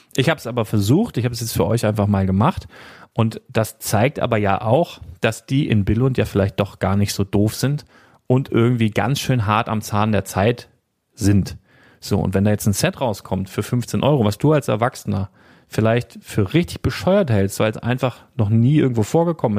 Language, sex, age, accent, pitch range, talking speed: German, male, 40-59, German, 105-135 Hz, 210 wpm